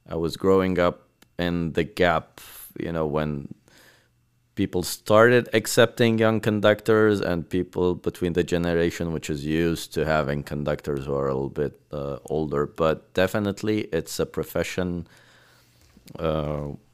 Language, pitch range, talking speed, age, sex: English, 75-90 Hz, 140 wpm, 30-49, male